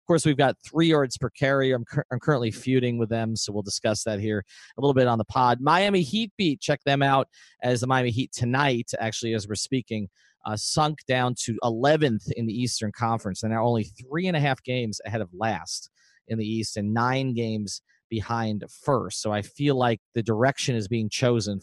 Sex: male